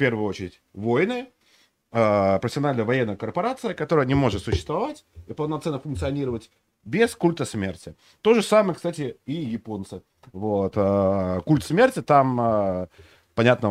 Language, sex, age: Russian, male, 30-49